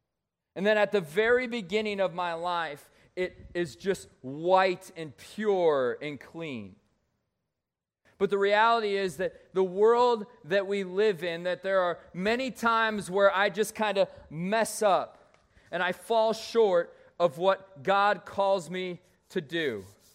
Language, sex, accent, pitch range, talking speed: English, male, American, 180-220 Hz, 150 wpm